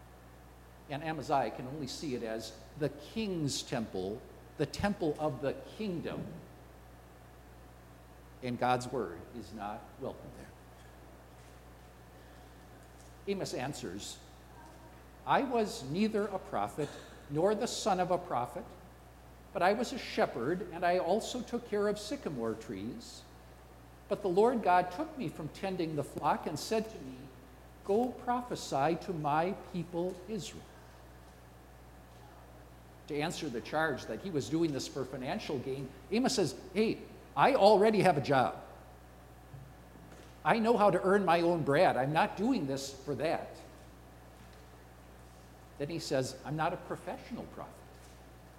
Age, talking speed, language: 60-79, 135 wpm, English